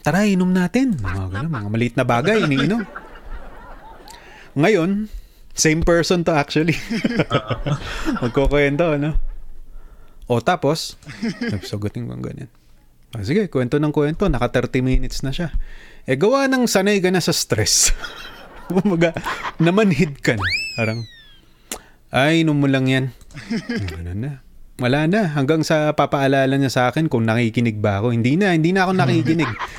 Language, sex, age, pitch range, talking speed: Filipino, male, 20-39, 120-170 Hz, 150 wpm